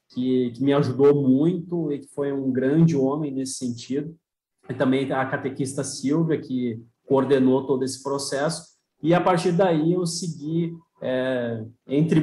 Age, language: 20-39, Portuguese